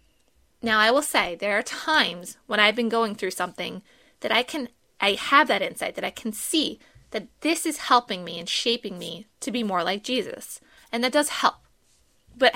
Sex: female